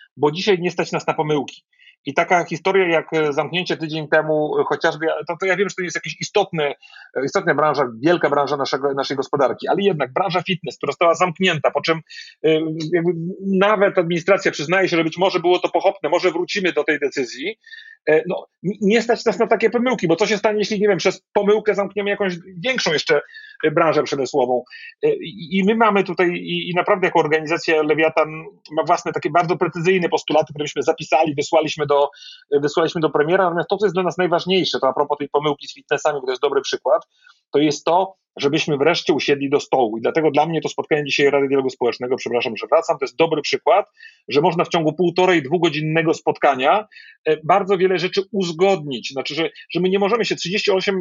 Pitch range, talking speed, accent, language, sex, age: 155-195 Hz, 195 wpm, native, Polish, male, 40-59